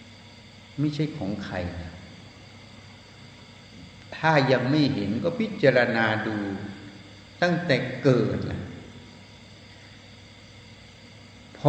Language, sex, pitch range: Thai, male, 105-130 Hz